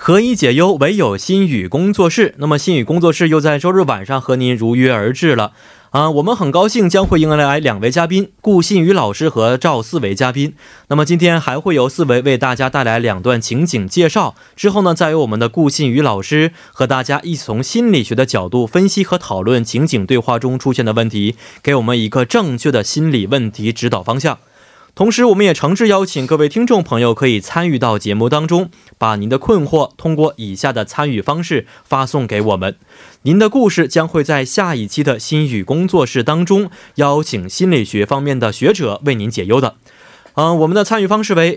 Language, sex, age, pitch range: Korean, male, 20-39, 120-175 Hz